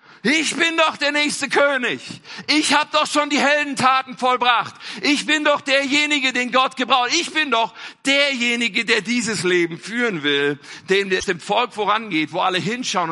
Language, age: German, 50-69